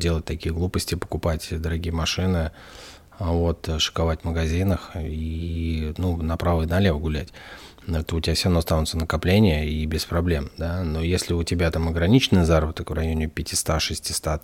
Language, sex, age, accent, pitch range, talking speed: Russian, male, 30-49, native, 80-95 Hz, 160 wpm